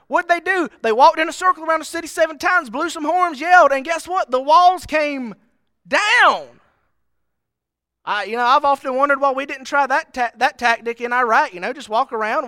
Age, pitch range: 30-49, 190-320 Hz